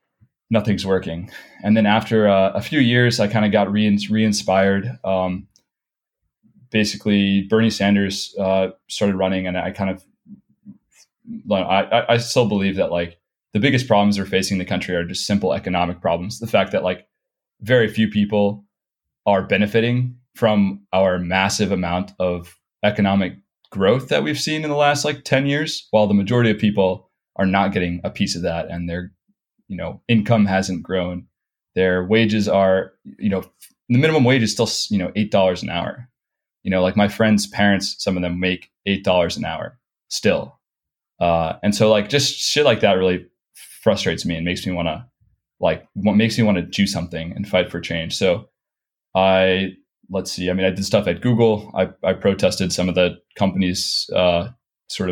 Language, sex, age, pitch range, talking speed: English, male, 20-39, 95-110 Hz, 180 wpm